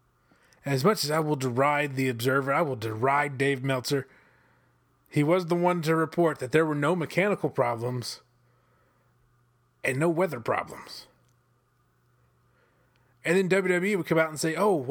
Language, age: English, 30-49